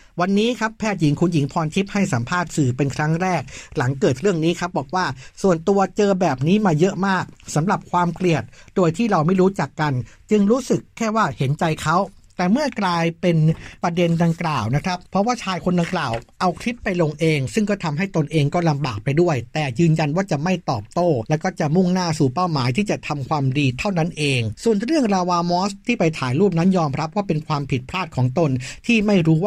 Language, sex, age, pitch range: Thai, male, 60-79, 150-185 Hz